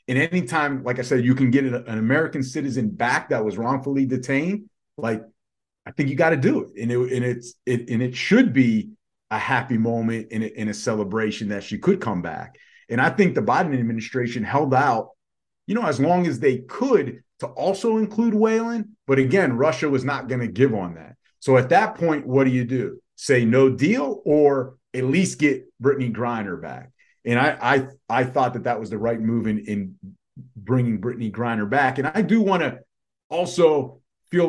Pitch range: 125-160 Hz